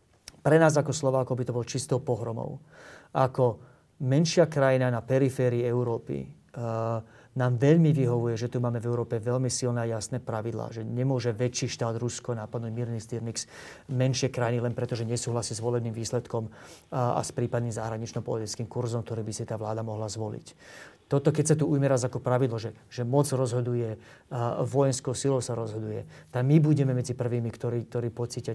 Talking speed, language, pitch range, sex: 170 wpm, Slovak, 120-135 Hz, male